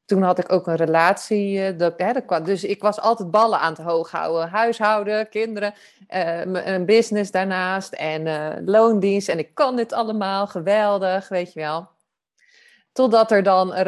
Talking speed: 150 wpm